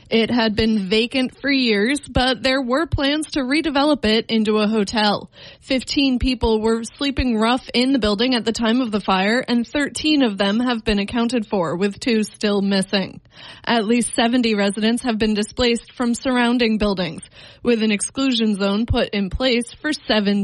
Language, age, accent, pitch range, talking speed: English, 20-39, American, 210-255 Hz, 180 wpm